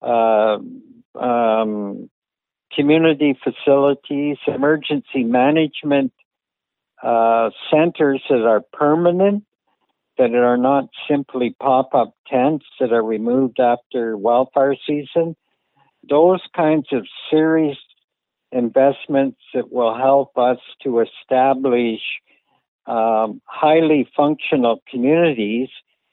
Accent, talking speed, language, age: American, 85 wpm, English, 60-79